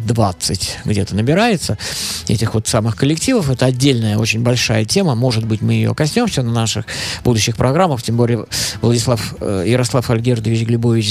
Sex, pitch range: male, 105-135 Hz